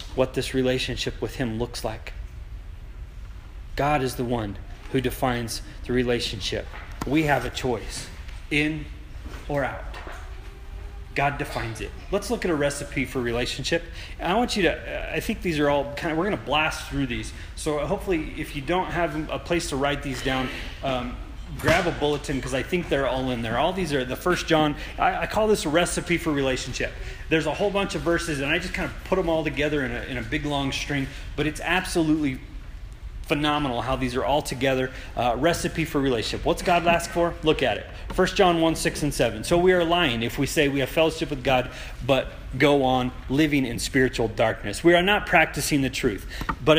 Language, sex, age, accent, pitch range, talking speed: English, male, 30-49, American, 125-160 Hz, 205 wpm